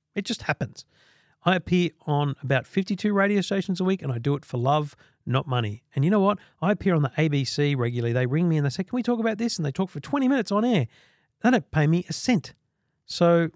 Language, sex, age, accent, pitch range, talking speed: English, male, 40-59, Australian, 135-185 Hz, 250 wpm